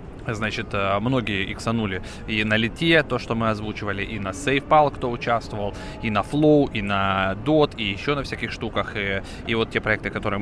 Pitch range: 100-120 Hz